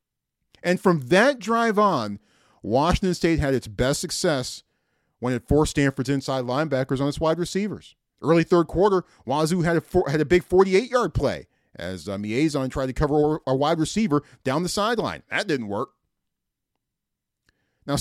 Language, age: English, 40-59